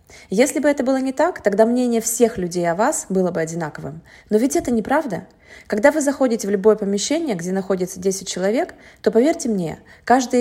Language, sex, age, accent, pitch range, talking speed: Russian, female, 20-39, native, 190-255 Hz, 190 wpm